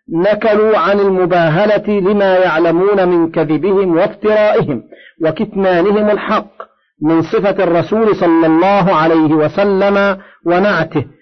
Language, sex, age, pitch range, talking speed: Arabic, male, 50-69, 165-205 Hz, 95 wpm